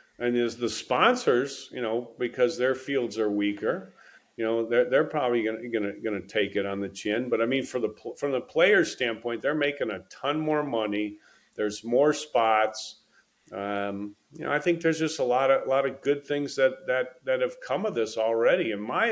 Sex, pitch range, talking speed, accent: male, 115-155 Hz, 210 wpm, American